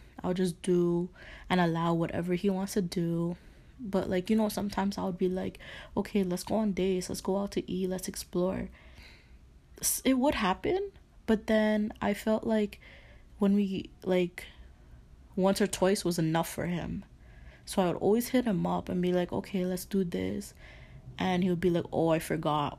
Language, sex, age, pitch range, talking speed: English, female, 20-39, 155-195 Hz, 190 wpm